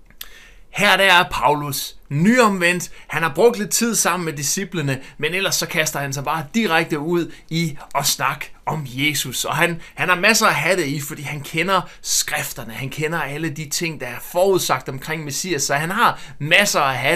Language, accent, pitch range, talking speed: Danish, native, 150-195 Hz, 190 wpm